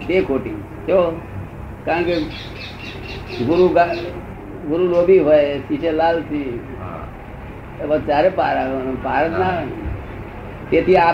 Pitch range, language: 120-160 Hz, Gujarati